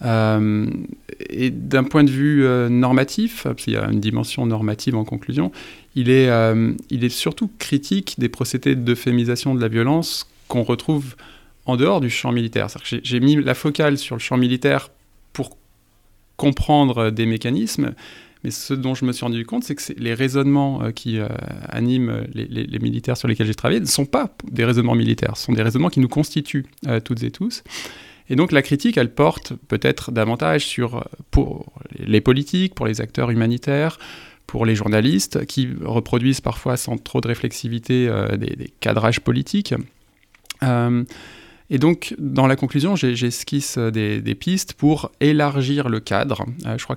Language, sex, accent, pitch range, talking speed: French, male, French, 115-140 Hz, 180 wpm